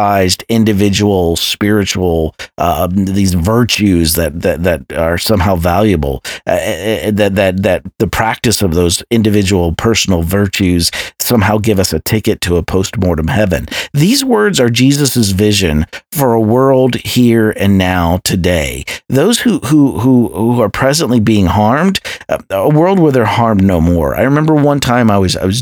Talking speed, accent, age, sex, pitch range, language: 160 wpm, American, 50-69, male, 90-125 Hz, English